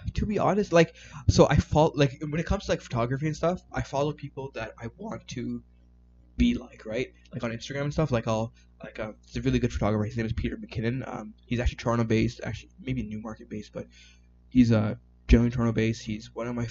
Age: 20-39